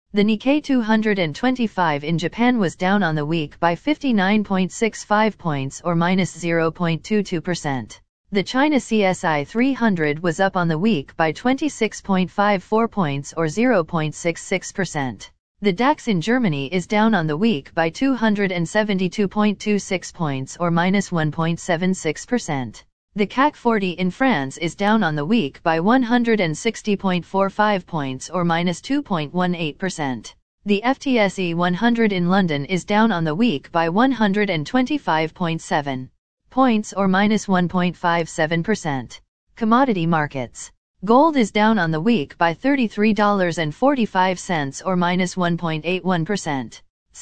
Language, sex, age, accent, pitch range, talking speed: English, female, 40-59, American, 165-215 Hz, 120 wpm